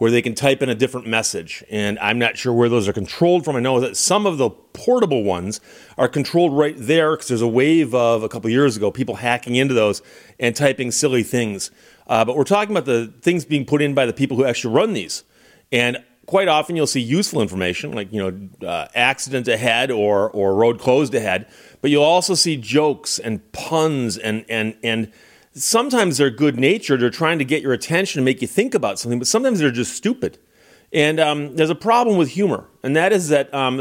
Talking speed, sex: 220 wpm, male